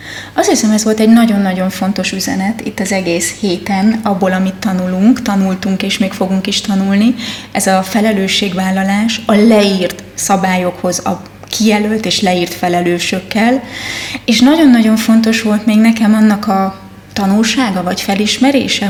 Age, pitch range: 20-39, 195-240 Hz